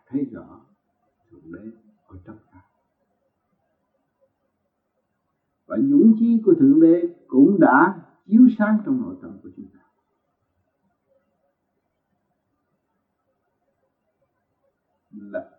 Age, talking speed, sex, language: 60-79, 90 wpm, male, Vietnamese